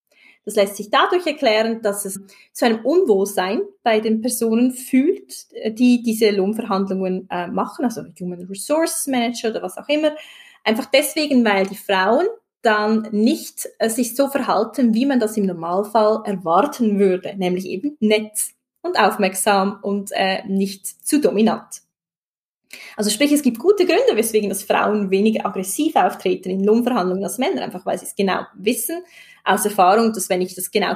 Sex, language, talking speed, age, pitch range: female, German, 165 wpm, 20-39, 195-255 Hz